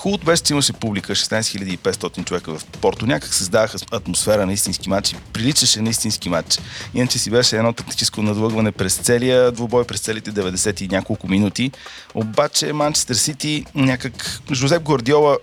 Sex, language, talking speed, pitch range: male, Bulgarian, 165 wpm, 100-125 Hz